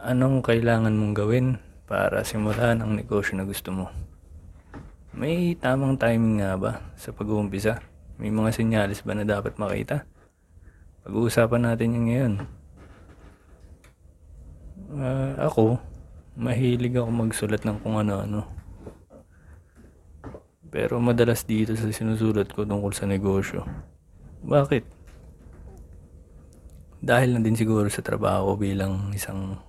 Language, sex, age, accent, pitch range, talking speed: Filipino, male, 20-39, native, 85-110 Hz, 110 wpm